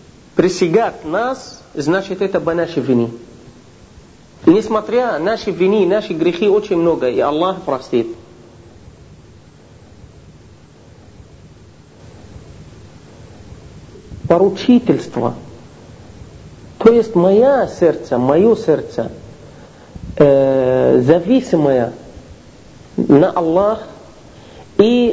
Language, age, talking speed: Russian, 50-69, 70 wpm